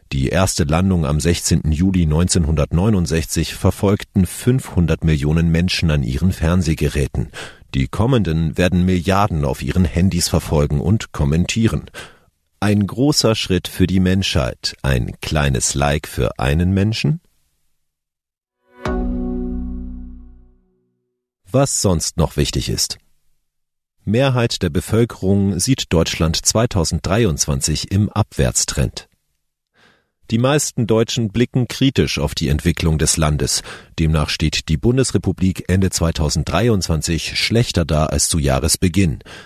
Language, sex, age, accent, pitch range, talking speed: German, male, 40-59, German, 75-100 Hz, 105 wpm